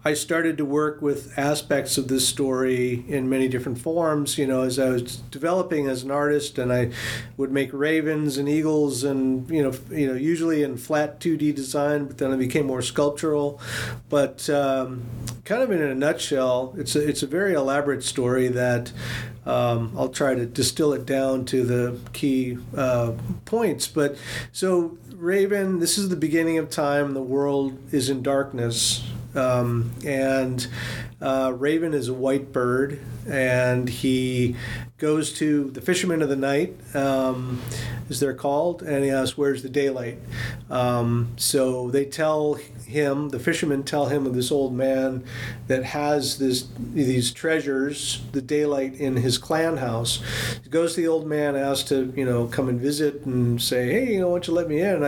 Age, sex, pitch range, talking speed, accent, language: 40-59, male, 125-145 Hz, 175 wpm, American, English